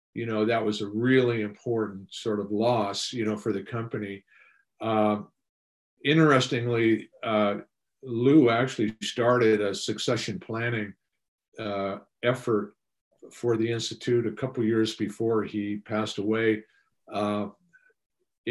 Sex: male